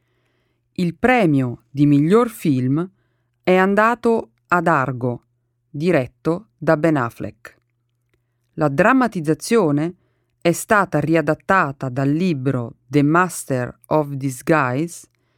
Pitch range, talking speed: 125-170 Hz, 95 wpm